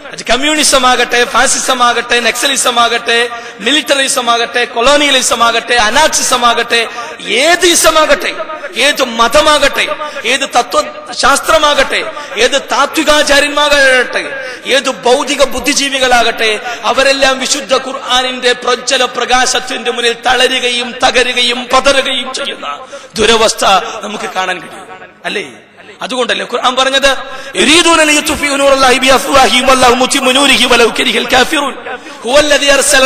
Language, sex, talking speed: Malayalam, male, 100 wpm